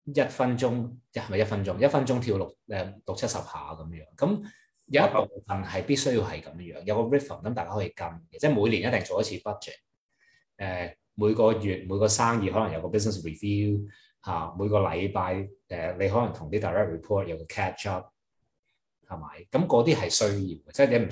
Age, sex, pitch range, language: 20-39, male, 95-120 Hz, Chinese